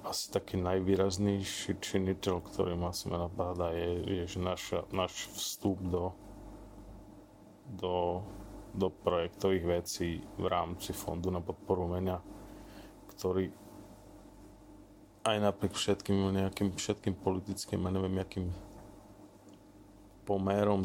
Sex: male